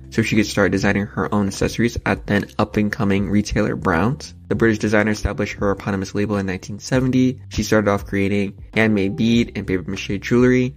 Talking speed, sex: 180 wpm, male